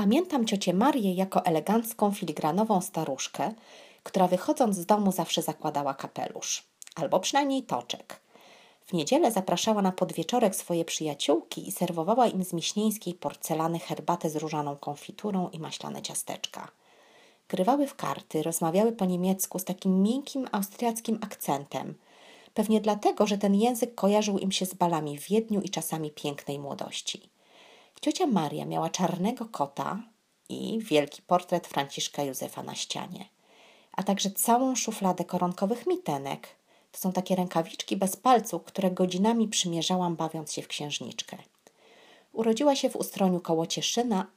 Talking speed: 135 wpm